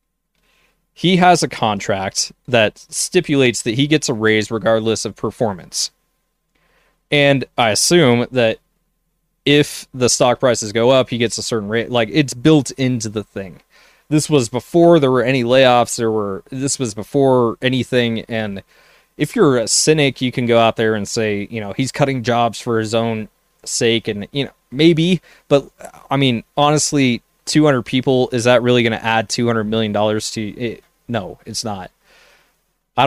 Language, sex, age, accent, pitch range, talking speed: English, male, 20-39, American, 110-145 Hz, 170 wpm